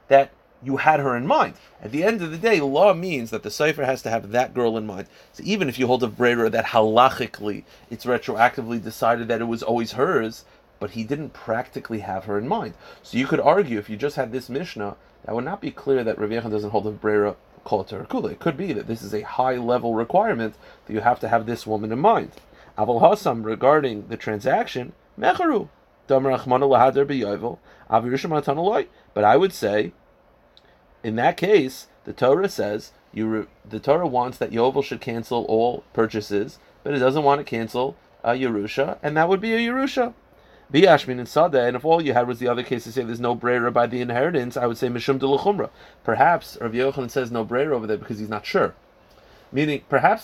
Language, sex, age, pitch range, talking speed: English, male, 30-49, 110-140 Hz, 205 wpm